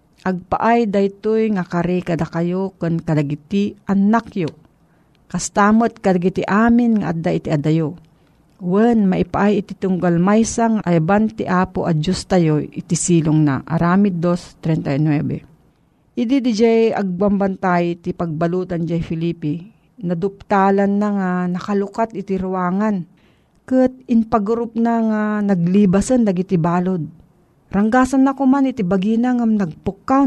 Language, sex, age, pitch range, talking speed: Filipino, female, 40-59, 170-210 Hz, 110 wpm